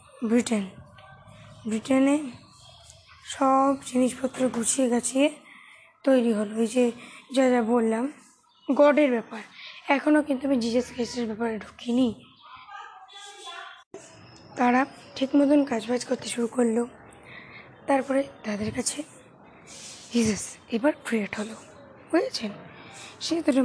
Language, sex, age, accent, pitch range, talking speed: Bengali, female, 20-39, native, 230-275 Hz, 95 wpm